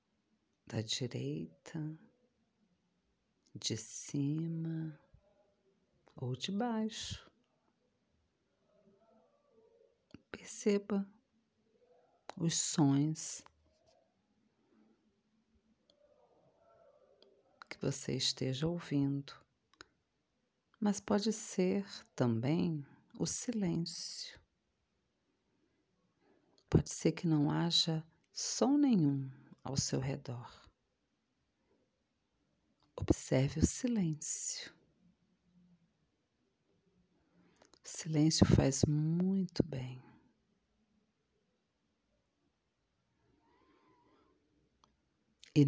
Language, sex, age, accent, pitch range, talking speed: Portuguese, female, 40-59, Brazilian, 140-195 Hz, 50 wpm